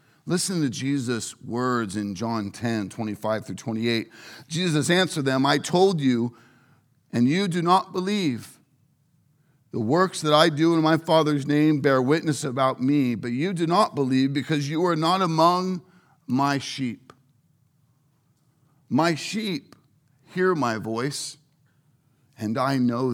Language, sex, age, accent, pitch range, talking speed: English, male, 50-69, American, 125-150 Hz, 140 wpm